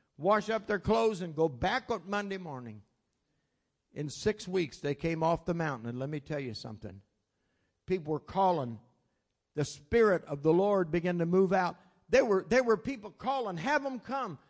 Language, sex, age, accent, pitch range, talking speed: English, male, 60-79, American, 175-260 Hz, 180 wpm